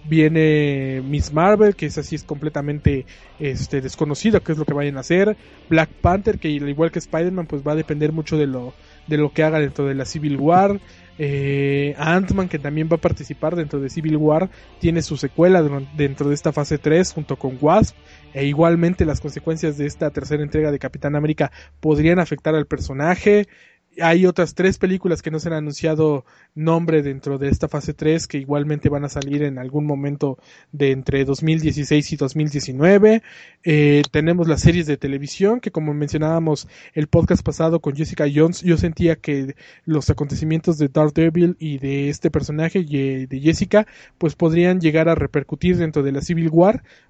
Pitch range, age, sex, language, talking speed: 145-170 Hz, 20-39, male, Spanish, 185 wpm